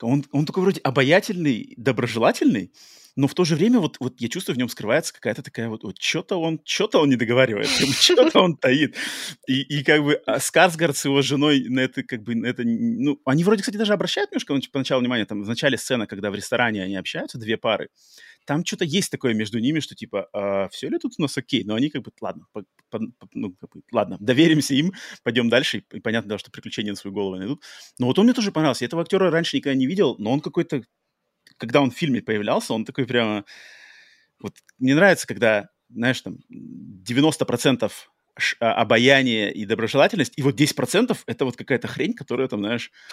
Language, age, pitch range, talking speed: Russian, 30-49, 115-155 Hz, 205 wpm